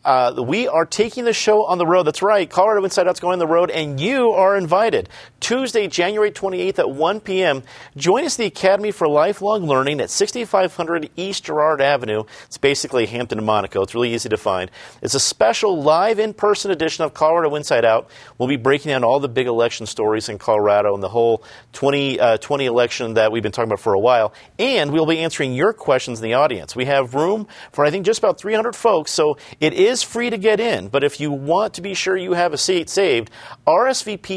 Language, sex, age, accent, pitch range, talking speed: English, male, 40-59, American, 130-185 Hz, 220 wpm